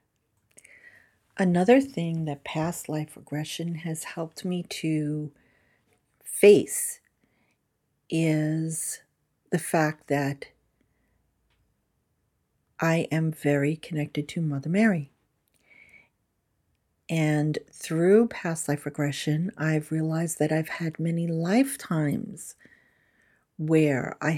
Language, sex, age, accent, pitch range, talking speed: English, female, 50-69, American, 150-180 Hz, 90 wpm